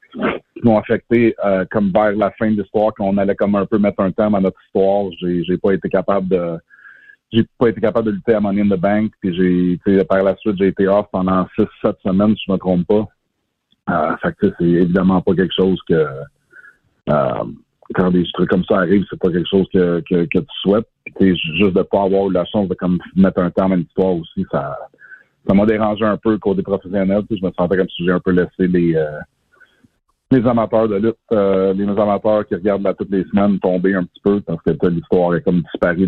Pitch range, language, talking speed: 90-105 Hz, French, 230 wpm